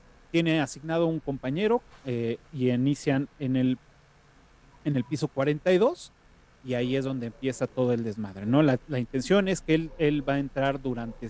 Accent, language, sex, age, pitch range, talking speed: Mexican, Spanish, male, 30-49, 130-165 Hz, 165 wpm